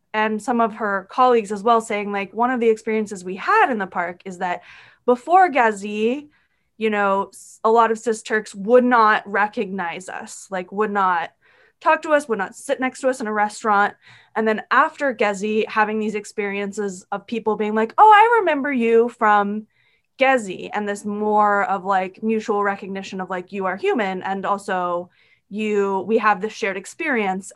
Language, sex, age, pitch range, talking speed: English, female, 20-39, 195-230 Hz, 185 wpm